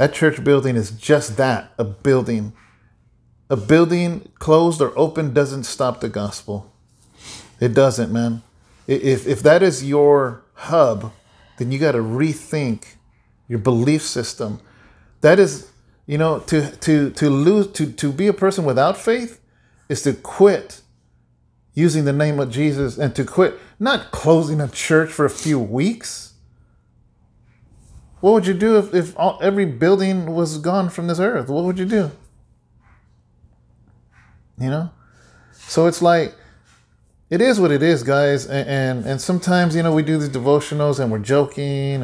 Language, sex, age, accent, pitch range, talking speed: English, male, 40-59, American, 125-165 Hz, 155 wpm